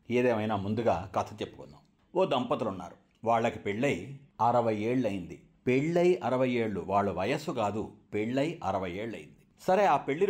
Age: 50-69